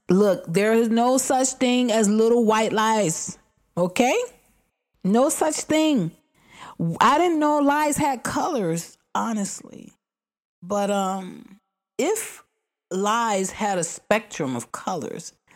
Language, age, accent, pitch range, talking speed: English, 30-49, American, 165-240 Hz, 115 wpm